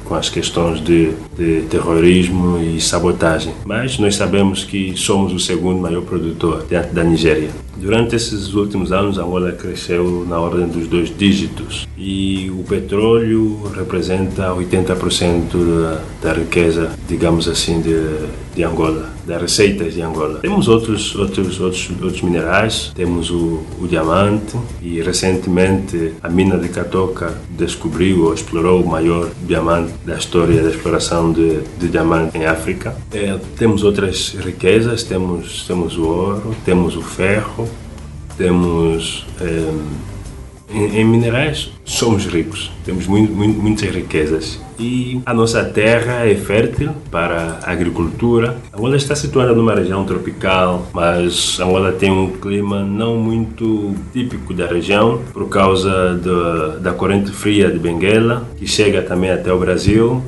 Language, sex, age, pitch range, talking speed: Portuguese, male, 30-49, 85-105 Hz, 135 wpm